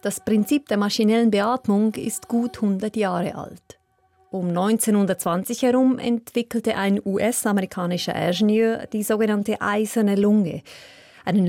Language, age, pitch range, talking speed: German, 30-49, 185-240 Hz, 115 wpm